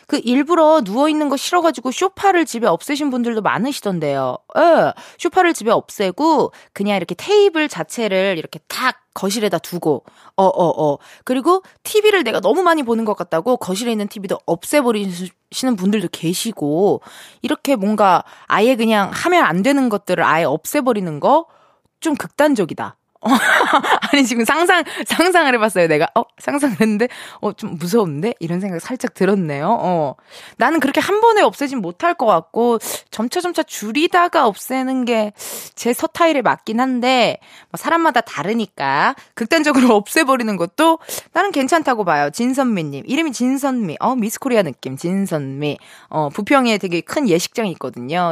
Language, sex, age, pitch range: Korean, female, 20-39, 190-300 Hz